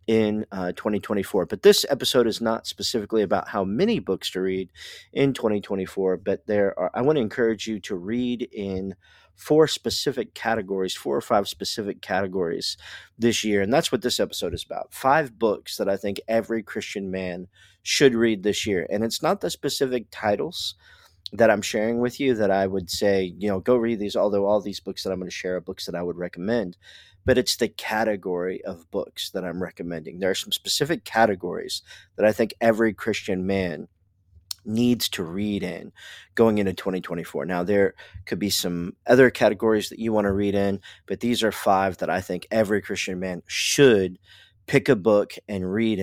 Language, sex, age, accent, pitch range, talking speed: English, male, 40-59, American, 95-115 Hz, 195 wpm